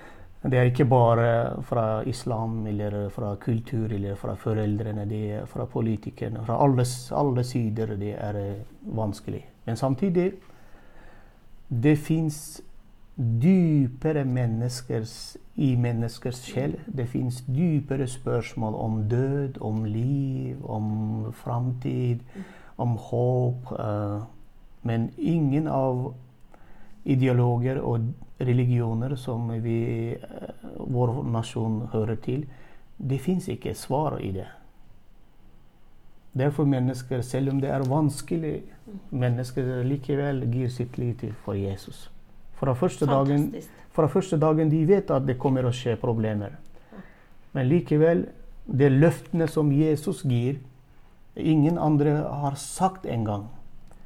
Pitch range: 115-140 Hz